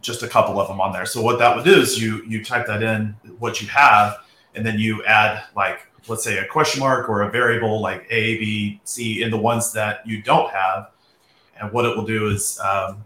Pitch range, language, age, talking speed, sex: 105-115 Hz, English, 30-49, 240 wpm, male